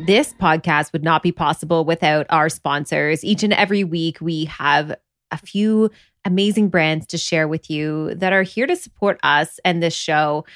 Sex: female